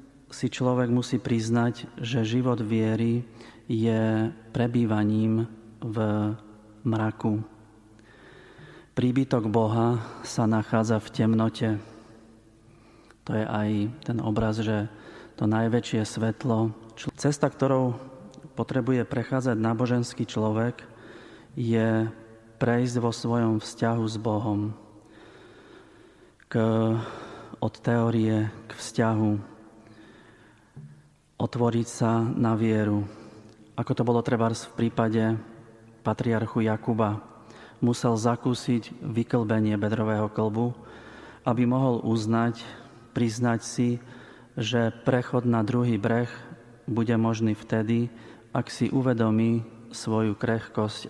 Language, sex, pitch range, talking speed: Slovak, male, 110-125 Hz, 95 wpm